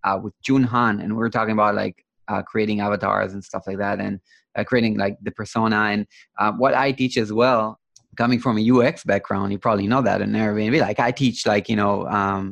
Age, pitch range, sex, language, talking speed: 20-39, 105-125 Hz, male, English, 230 wpm